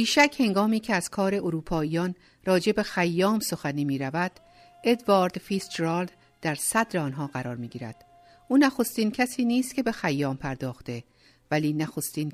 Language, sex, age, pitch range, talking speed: Persian, female, 50-69, 150-200 Hz, 130 wpm